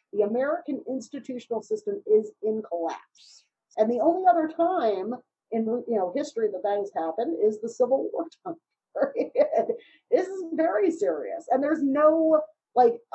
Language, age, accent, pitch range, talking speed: English, 40-59, American, 185-275 Hz, 150 wpm